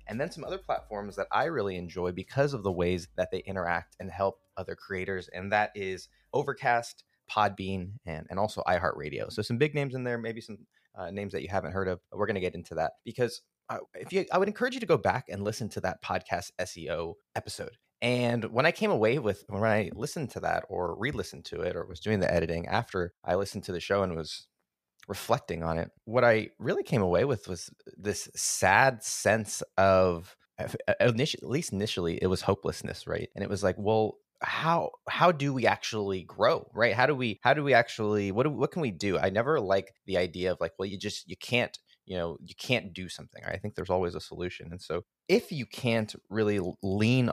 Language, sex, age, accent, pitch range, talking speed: English, male, 20-39, American, 90-120 Hz, 220 wpm